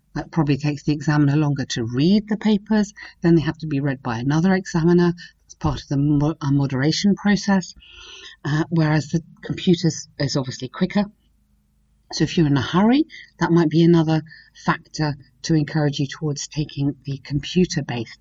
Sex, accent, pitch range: female, British, 145-185 Hz